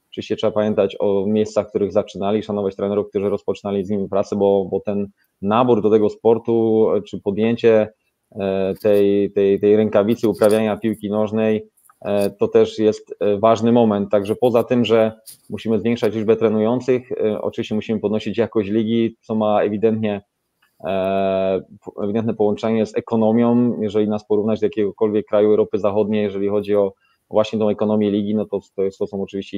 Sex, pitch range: male, 100-110 Hz